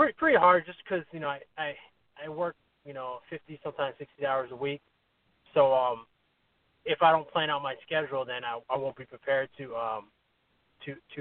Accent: American